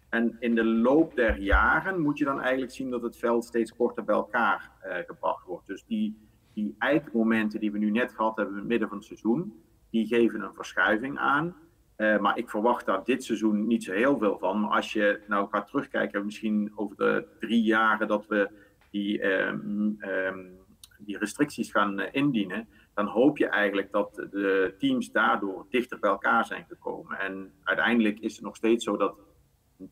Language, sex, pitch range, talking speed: Dutch, male, 100-115 Hz, 195 wpm